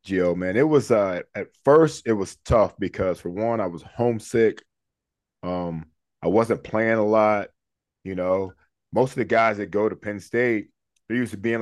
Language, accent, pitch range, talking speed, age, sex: English, American, 100-125 Hz, 190 wpm, 20-39, male